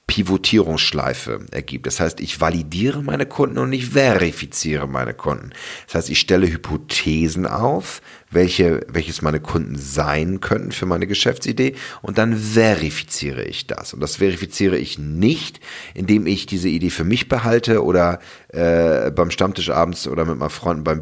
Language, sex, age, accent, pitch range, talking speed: German, male, 40-59, German, 80-95 Hz, 155 wpm